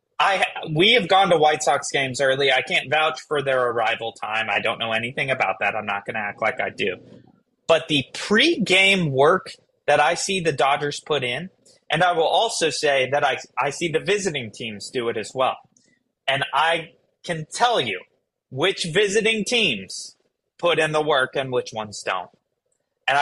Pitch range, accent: 140-230 Hz, American